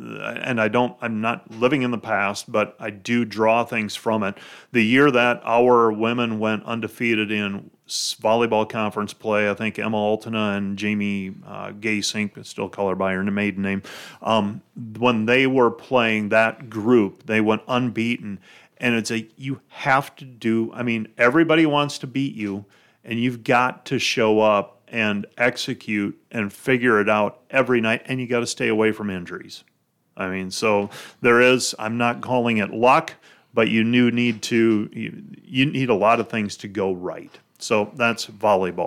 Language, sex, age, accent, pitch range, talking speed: English, male, 30-49, American, 110-125 Hz, 180 wpm